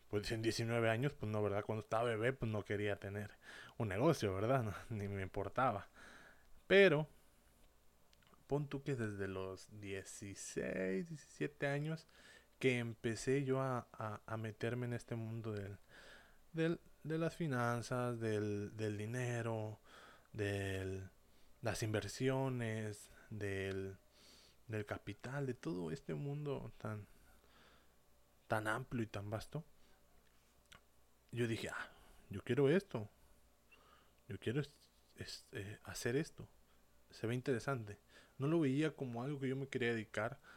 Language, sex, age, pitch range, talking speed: English, male, 20-39, 105-135 Hz, 135 wpm